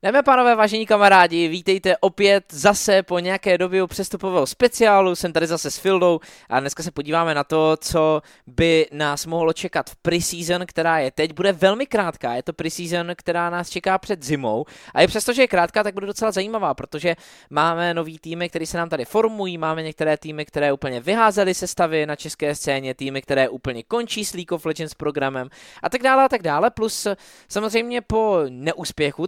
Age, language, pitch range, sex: 20-39, Czech, 140-190 Hz, male